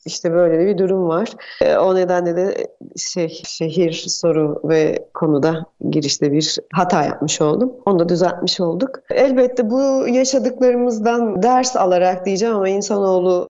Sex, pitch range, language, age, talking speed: female, 185-245 Hz, Turkish, 30-49, 140 wpm